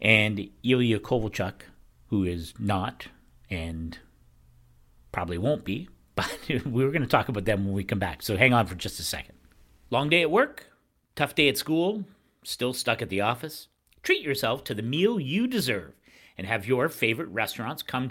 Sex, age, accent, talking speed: male, 50-69, American, 180 wpm